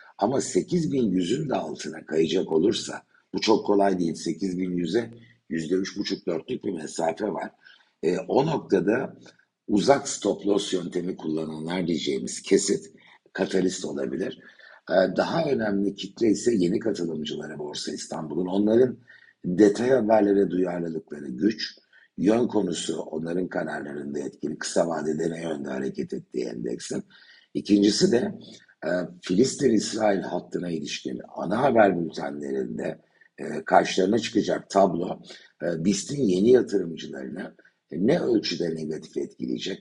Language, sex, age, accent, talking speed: Turkish, male, 60-79, native, 110 wpm